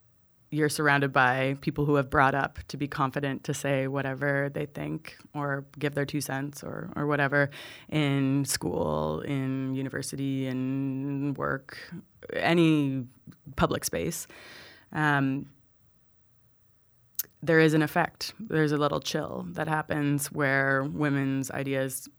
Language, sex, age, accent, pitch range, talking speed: English, female, 20-39, American, 135-150 Hz, 125 wpm